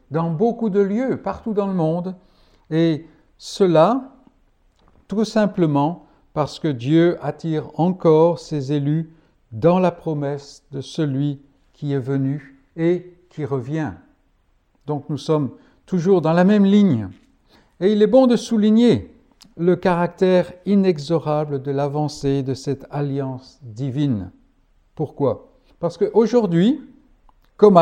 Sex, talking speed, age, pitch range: male, 125 wpm, 60-79, 150-210 Hz